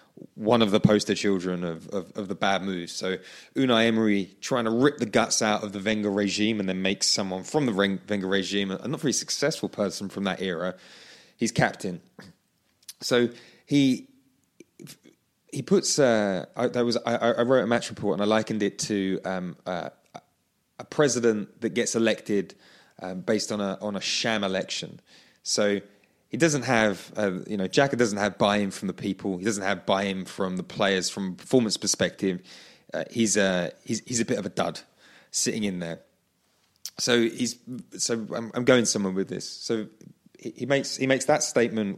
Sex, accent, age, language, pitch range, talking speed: male, British, 20-39, English, 95-115 Hz, 190 wpm